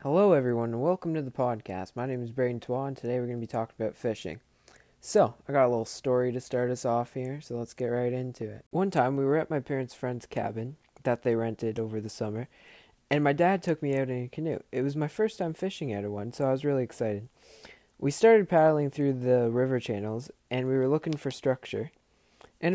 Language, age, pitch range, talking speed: English, 20-39, 115-145 Hz, 235 wpm